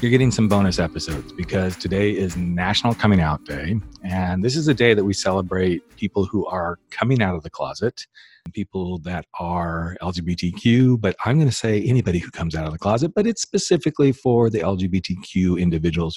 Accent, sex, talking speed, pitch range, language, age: American, male, 185 wpm, 90-115 Hz, English, 40-59